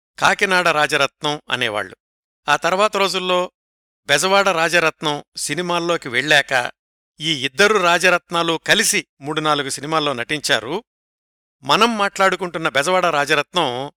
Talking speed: 95 wpm